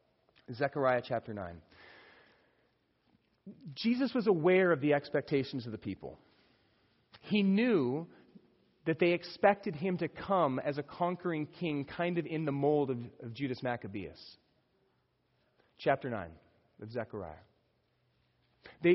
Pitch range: 125-190 Hz